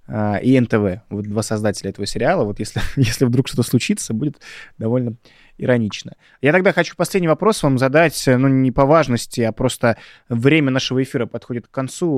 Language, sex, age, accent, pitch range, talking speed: Russian, male, 20-39, native, 110-135 Hz, 175 wpm